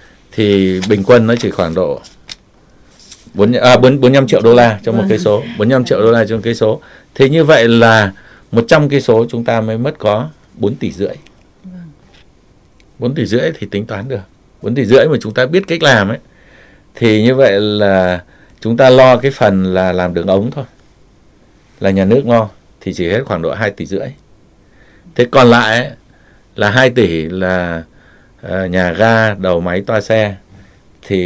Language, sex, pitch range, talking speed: Vietnamese, male, 95-120 Hz, 190 wpm